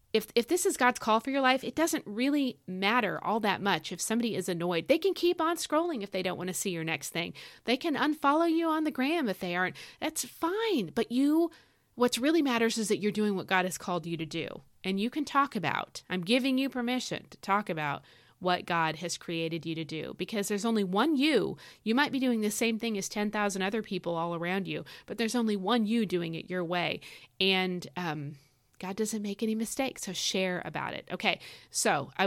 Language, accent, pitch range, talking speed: English, American, 175-230 Hz, 230 wpm